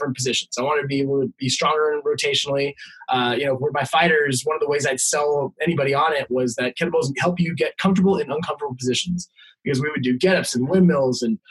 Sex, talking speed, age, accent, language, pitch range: male, 230 wpm, 20-39, American, English, 130-175 Hz